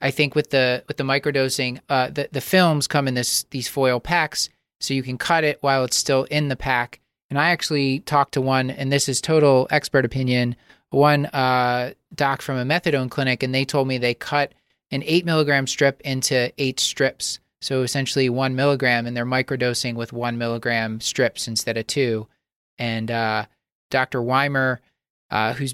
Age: 30-49